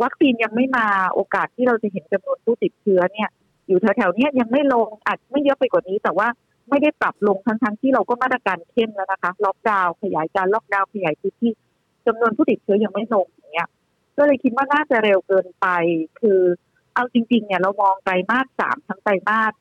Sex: female